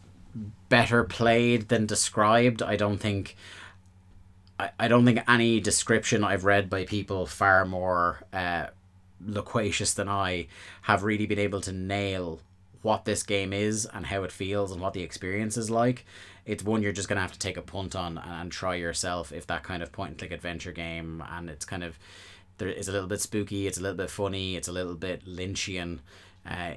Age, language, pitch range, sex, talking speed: 30-49, English, 90-100 Hz, male, 195 wpm